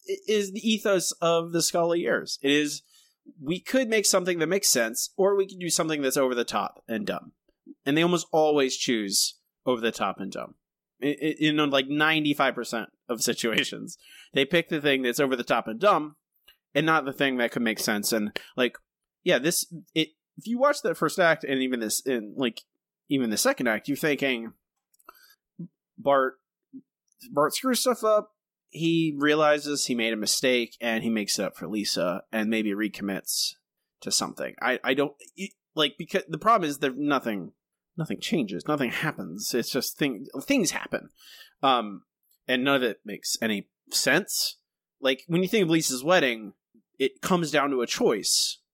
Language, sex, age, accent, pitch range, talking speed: English, male, 20-39, American, 130-185 Hz, 180 wpm